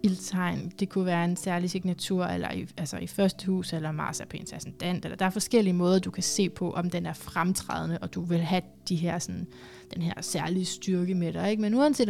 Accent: native